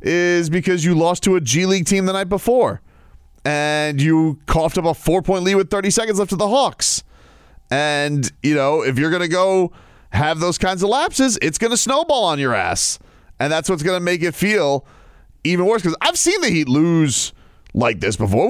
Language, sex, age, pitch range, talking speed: English, male, 30-49, 125-170 Hz, 210 wpm